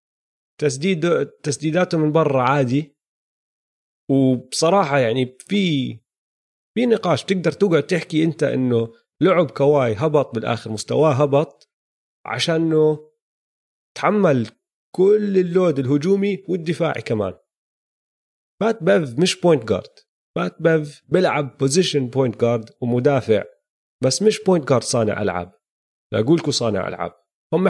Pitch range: 125-170 Hz